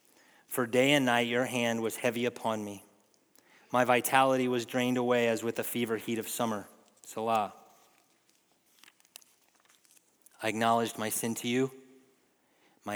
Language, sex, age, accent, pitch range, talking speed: English, male, 30-49, American, 110-140 Hz, 140 wpm